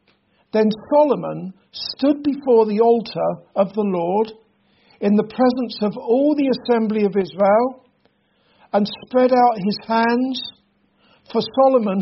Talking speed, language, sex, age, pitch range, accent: 125 wpm, English, male, 50-69, 195-230 Hz, British